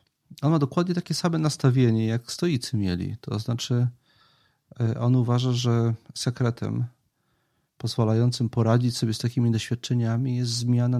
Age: 40-59